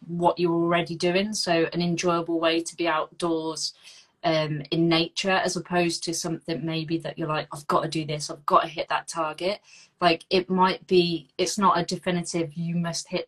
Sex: female